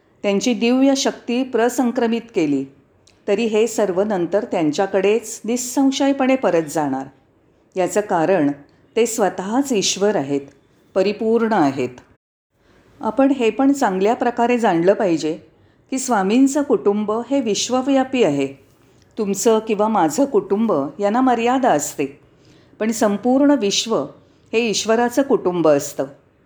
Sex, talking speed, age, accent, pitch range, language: female, 110 wpm, 40-59, native, 165-235 Hz, Marathi